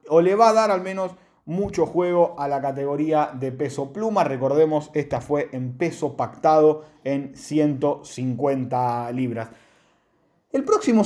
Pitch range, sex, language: 140-195 Hz, male, Spanish